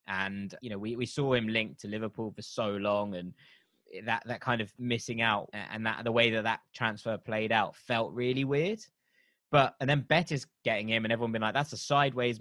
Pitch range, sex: 110-130 Hz, male